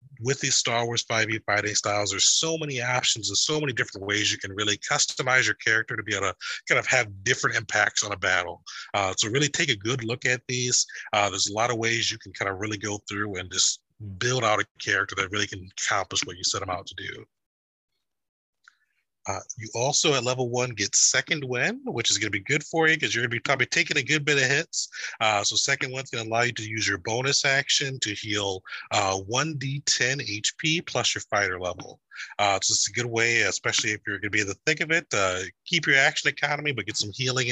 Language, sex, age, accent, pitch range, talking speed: English, male, 30-49, American, 105-135 Hz, 240 wpm